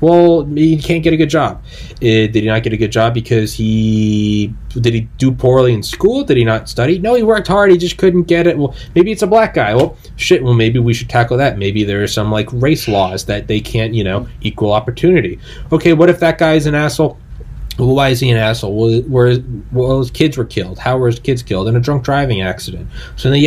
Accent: American